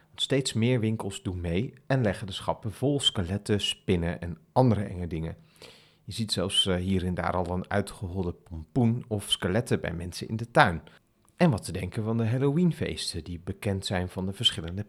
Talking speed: 185 wpm